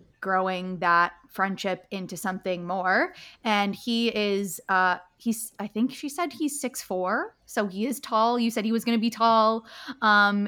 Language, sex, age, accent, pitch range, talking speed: English, female, 20-39, American, 185-220 Hz, 180 wpm